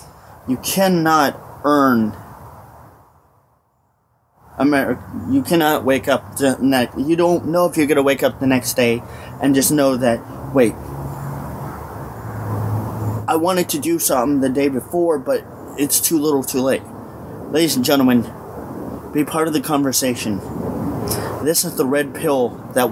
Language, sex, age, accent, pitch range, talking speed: English, male, 30-49, American, 125-175 Hz, 145 wpm